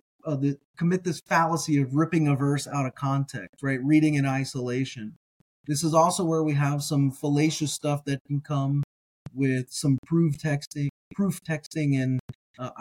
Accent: American